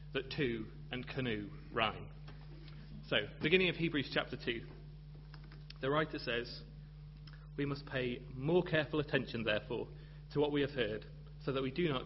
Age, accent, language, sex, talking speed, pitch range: 30-49, British, English, male, 155 wpm, 130-150 Hz